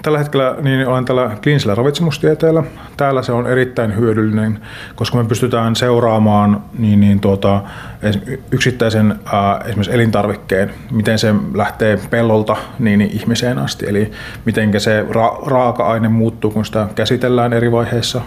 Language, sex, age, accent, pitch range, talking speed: Finnish, male, 30-49, native, 105-125 Hz, 135 wpm